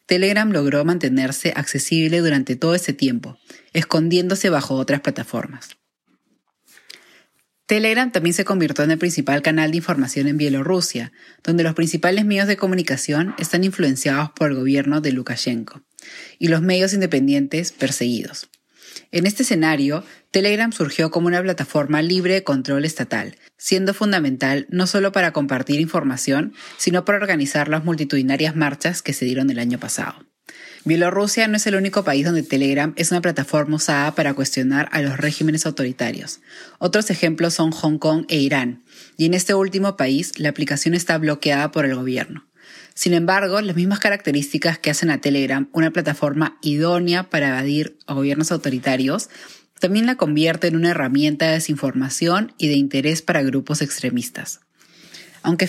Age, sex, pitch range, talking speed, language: 20-39, female, 140-180 Hz, 155 wpm, Spanish